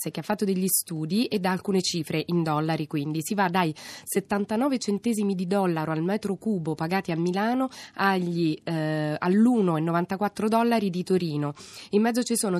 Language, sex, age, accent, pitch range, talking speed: Italian, female, 20-39, native, 170-210 Hz, 160 wpm